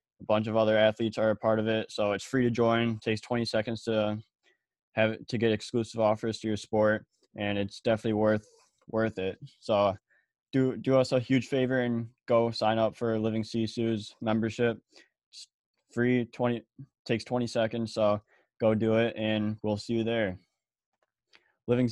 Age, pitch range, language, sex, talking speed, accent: 20-39, 105-115 Hz, English, male, 180 wpm, American